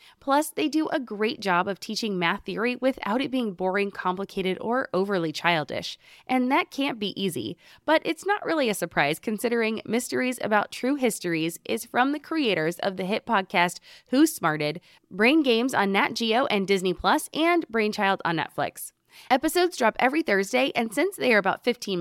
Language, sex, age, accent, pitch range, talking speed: English, female, 20-39, American, 200-290 Hz, 180 wpm